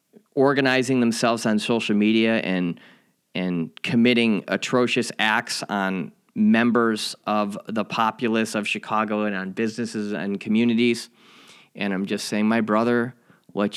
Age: 30-49